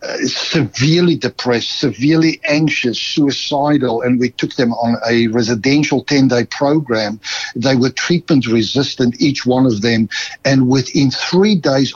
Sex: male